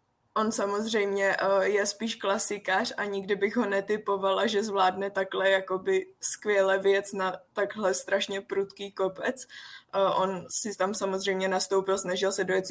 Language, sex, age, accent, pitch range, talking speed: Czech, female, 20-39, native, 190-205 Hz, 130 wpm